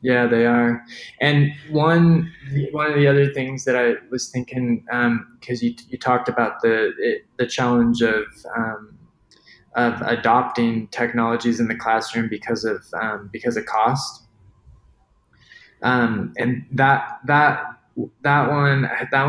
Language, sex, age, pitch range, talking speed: English, male, 20-39, 120-140 Hz, 140 wpm